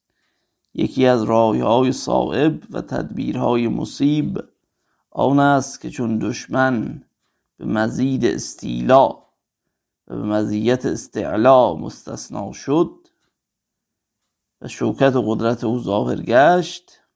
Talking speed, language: 100 wpm, Persian